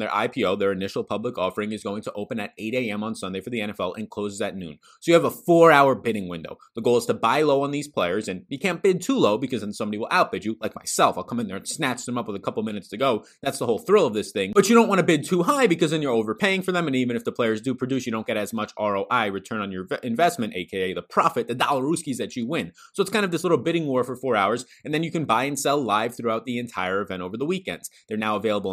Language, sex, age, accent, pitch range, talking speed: English, male, 30-49, American, 110-150 Hz, 295 wpm